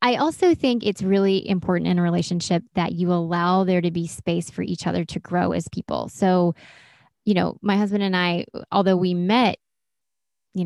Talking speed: 190 wpm